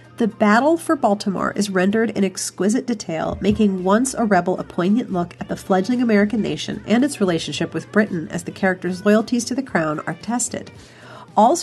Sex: female